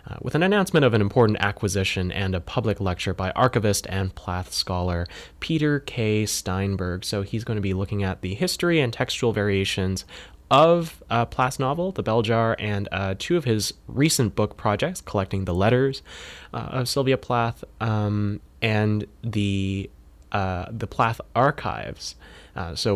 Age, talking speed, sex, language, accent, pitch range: 20-39, 165 wpm, male, English, American, 95-115 Hz